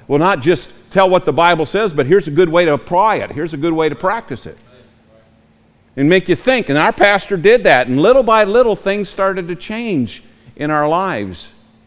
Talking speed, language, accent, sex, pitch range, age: 215 wpm, English, American, male, 115-180 Hz, 50-69